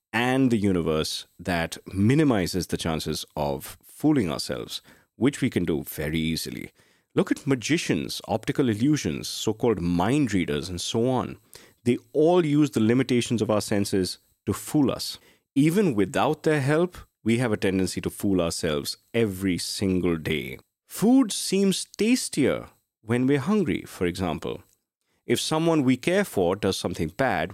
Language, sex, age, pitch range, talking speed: English, male, 30-49, 90-135 Hz, 150 wpm